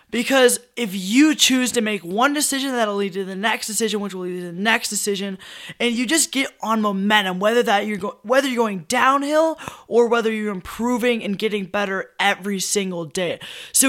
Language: English